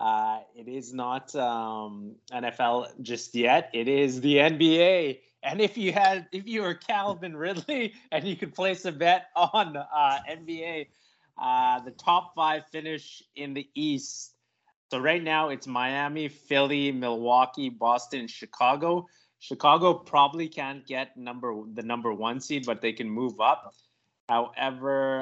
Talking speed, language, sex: 150 wpm, English, male